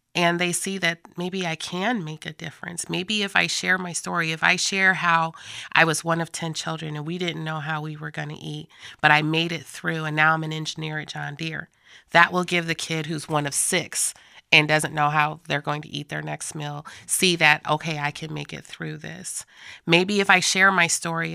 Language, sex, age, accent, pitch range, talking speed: English, female, 30-49, American, 155-170 Hz, 235 wpm